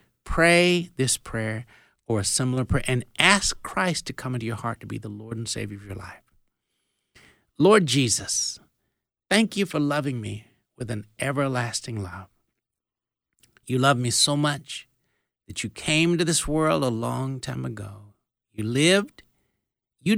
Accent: American